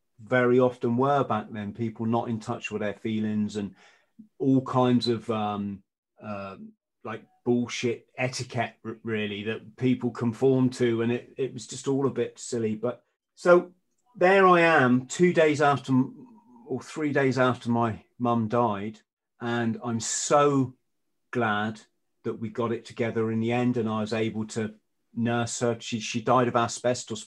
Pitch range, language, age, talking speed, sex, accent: 110-125 Hz, English, 30-49, 165 wpm, male, British